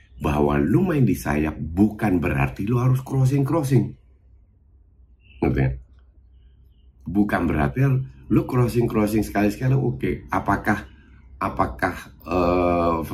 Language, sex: Indonesian, male